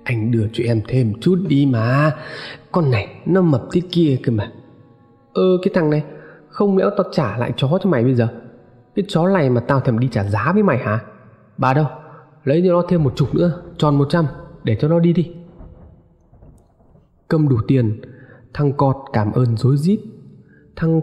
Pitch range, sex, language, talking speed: 115-155 Hz, male, Vietnamese, 200 wpm